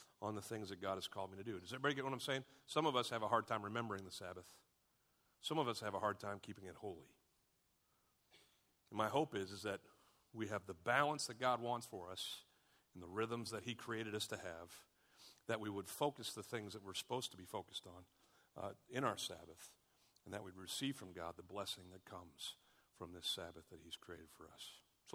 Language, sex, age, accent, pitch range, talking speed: English, male, 50-69, American, 100-130 Hz, 230 wpm